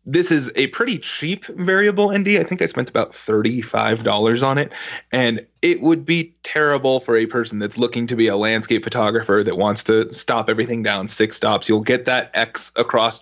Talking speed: 195 wpm